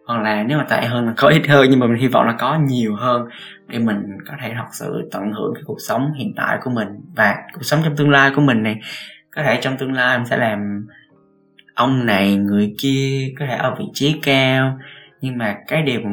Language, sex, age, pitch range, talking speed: Vietnamese, male, 20-39, 110-140 Hz, 240 wpm